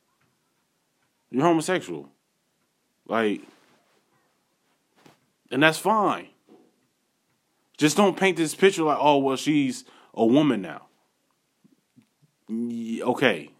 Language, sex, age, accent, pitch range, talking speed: English, male, 20-39, American, 120-155 Hz, 85 wpm